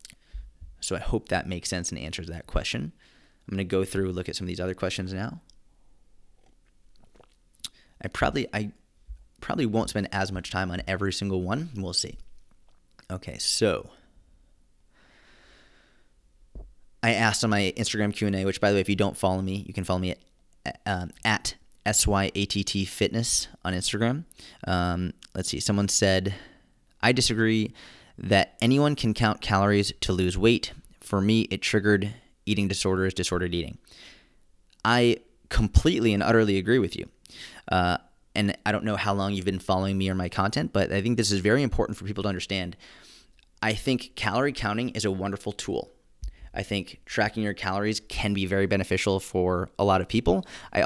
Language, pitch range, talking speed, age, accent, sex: English, 90-110 Hz, 170 wpm, 30-49, American, male